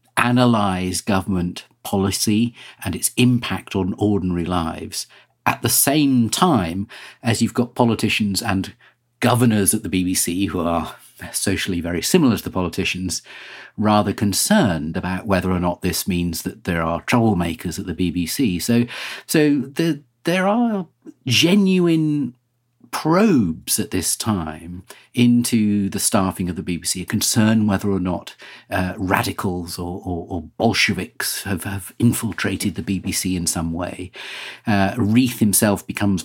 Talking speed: 135 wpm